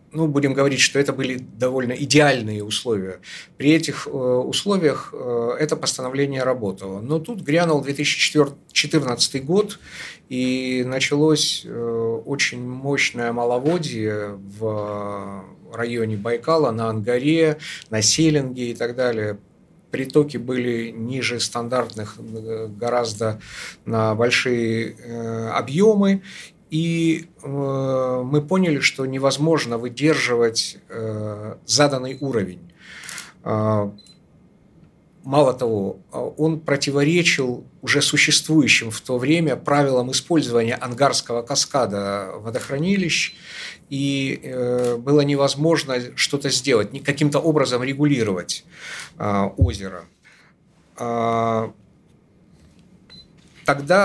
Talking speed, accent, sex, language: 85 wpm, native, male, Russian